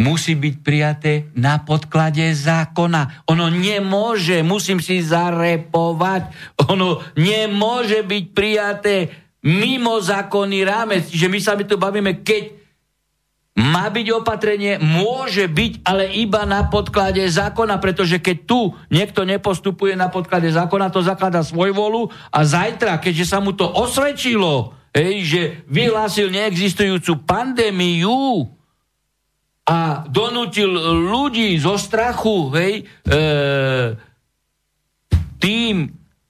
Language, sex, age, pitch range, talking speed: Slovak, male, 60-79, 160-205 Hz, 110 wpm